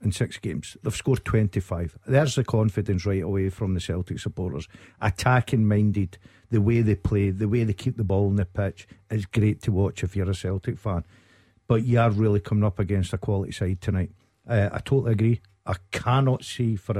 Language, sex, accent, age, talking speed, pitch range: English, male, British, 50-69, 205 wpm, 100-120 Hz